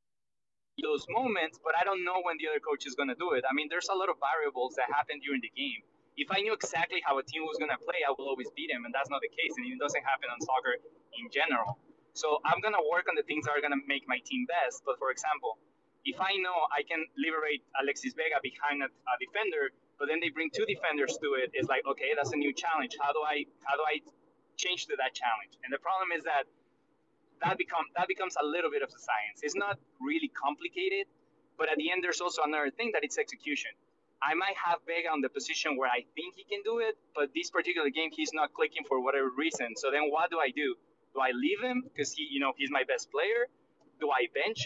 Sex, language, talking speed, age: male, English, 250 wpm, 20-39